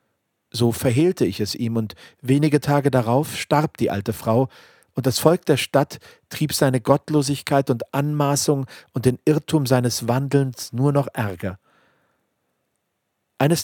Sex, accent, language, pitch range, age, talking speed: male, German, German, 115-150 Hz, 50-69, 140 wpm